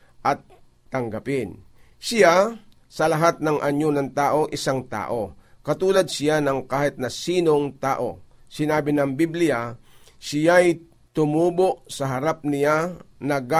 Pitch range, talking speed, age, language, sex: 125-160 Hz, 125 wpm, 50-69, Filipino, male